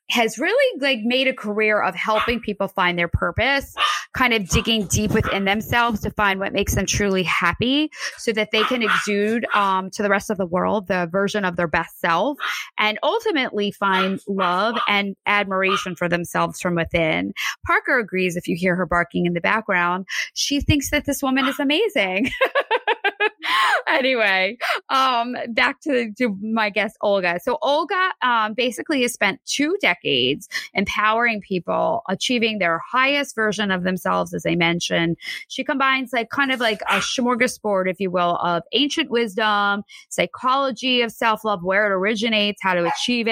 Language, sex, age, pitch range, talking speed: English, female, 20-39, 190-255 Hz, 165 wpm